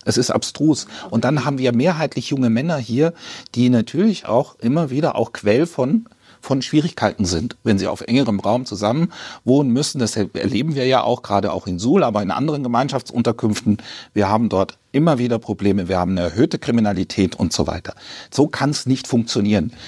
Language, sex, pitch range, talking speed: German, male, 110-150 Hz, 185 wpm